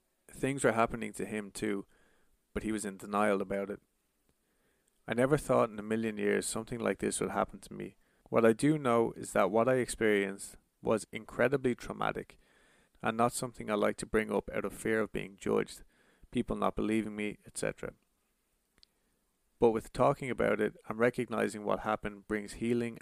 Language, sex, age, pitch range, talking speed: English, male, 30-49, 105-120 Hz, 180 wpm